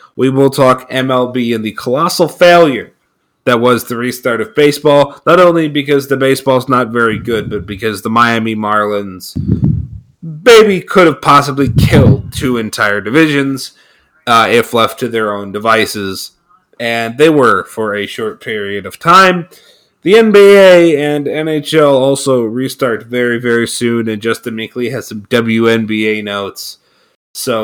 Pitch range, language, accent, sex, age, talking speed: 110-150 Hz, English, American, male, 30-49, 150 wpm